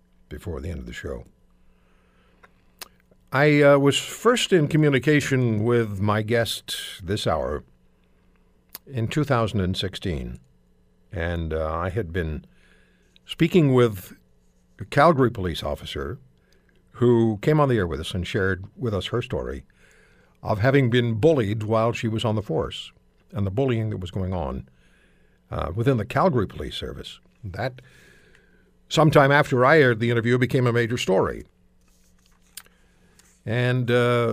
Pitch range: 90-125 Hz